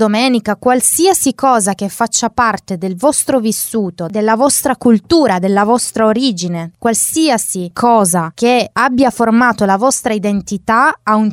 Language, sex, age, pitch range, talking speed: Italian, female, 20-39, 190-240 Hz, 130 wpm